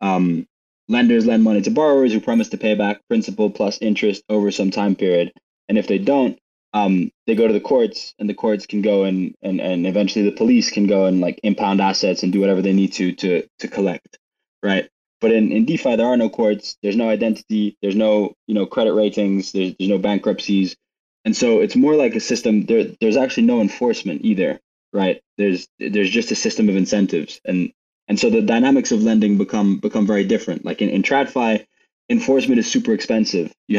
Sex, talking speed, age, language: male, 210 wpm, 20-39, English